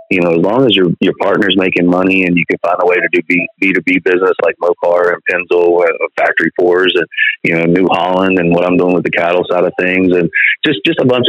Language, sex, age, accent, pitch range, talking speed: English, male, 30-49, American, 90-115 Hz, 260 wpm